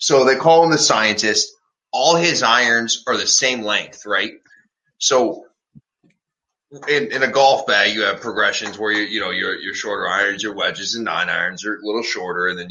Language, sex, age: English, male, 20-39